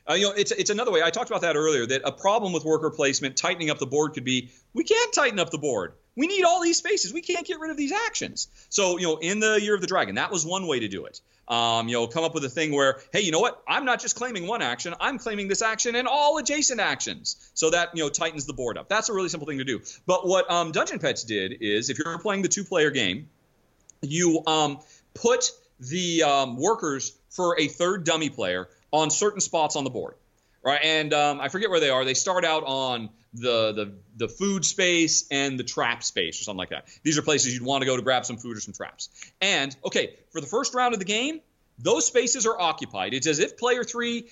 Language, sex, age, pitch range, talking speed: English, male, 40-59, 140-230 Hz, 255 wpm